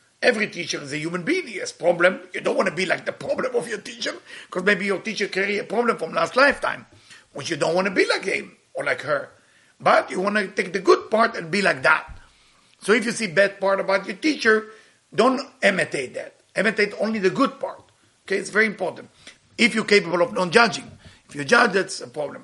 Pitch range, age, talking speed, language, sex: 185-230 Hz, 50-69, 230 wpm, English, male